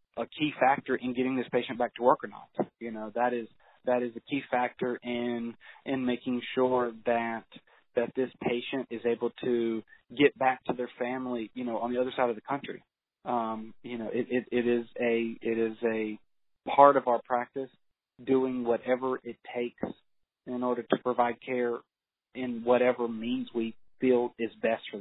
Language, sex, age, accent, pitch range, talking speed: English, male, 30-49, American, 115-130 Hz, 185 wpm